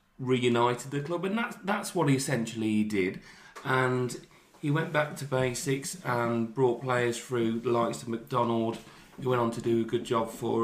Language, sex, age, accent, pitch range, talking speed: English, male, 30-49, British, 110-140 Hz, 185 wpm